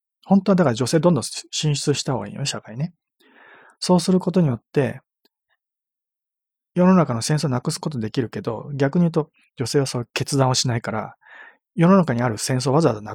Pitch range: 125-165 Hz